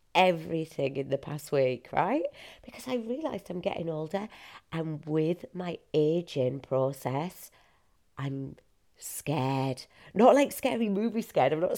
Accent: British